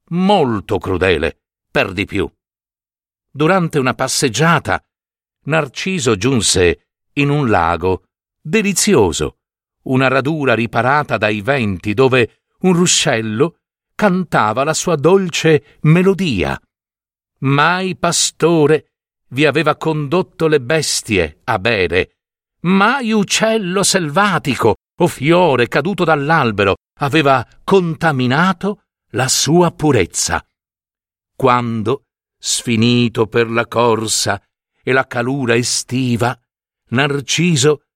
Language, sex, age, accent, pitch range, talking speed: Italian, male, 60-79, native, 120-175 Hz, 90 wpm